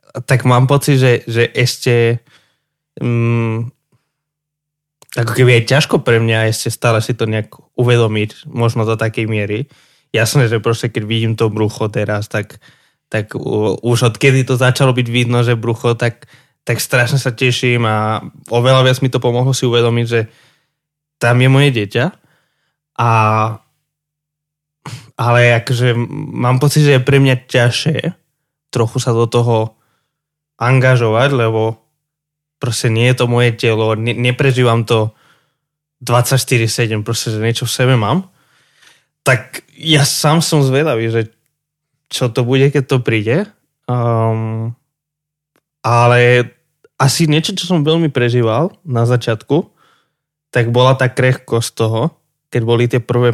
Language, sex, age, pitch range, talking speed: Slovak, male, 20-39, 115-145 Hz, 135 wpm